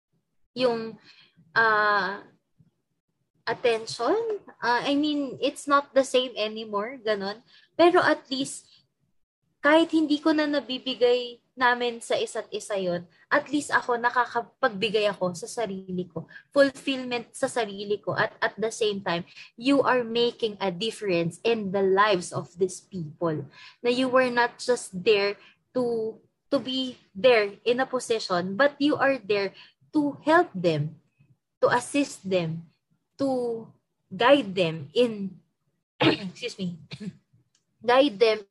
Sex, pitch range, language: female, 190-260 Hz, Filipino